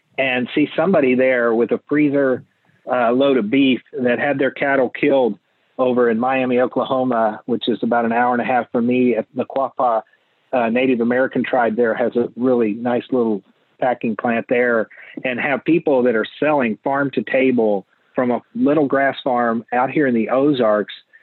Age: 40-59